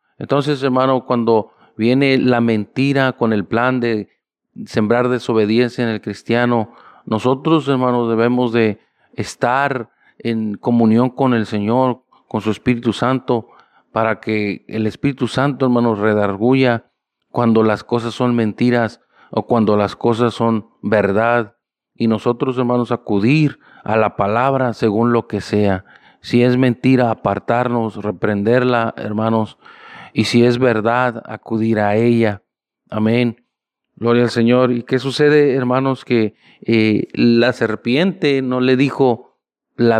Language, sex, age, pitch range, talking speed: Spanish, male, 40-59, 110-125 Hz, 130 wpm